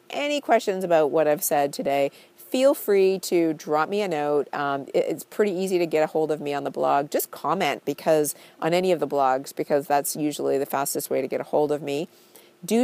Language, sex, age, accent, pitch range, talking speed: English, female, 40-59, American, 145-185 Hz, 230 wpm